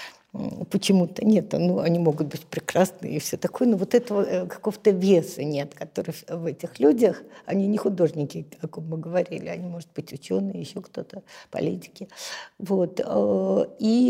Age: 50-69